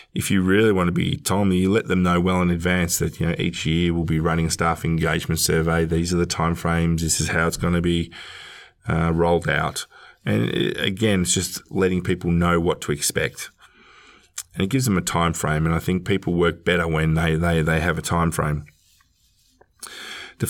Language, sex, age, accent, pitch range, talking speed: English, male, 20-39, Australian, 85-95 Hz, 215 wpm